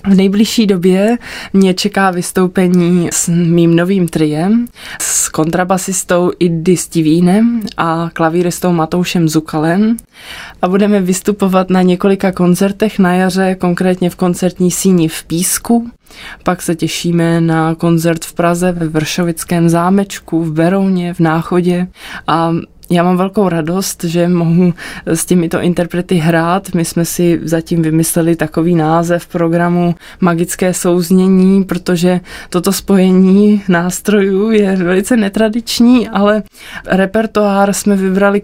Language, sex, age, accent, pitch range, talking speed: Czech, female, 20-39, native, 170-195 Hz, 120 wpm